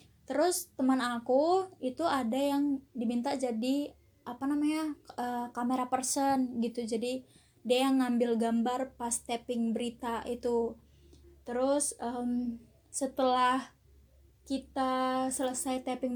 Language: Indonesian